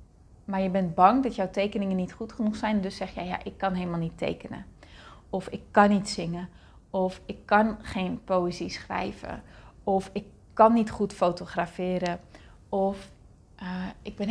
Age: 30-49